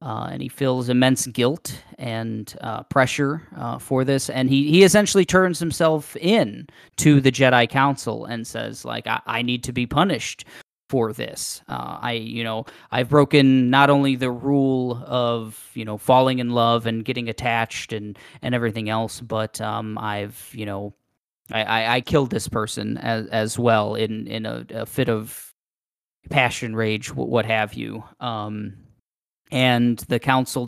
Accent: American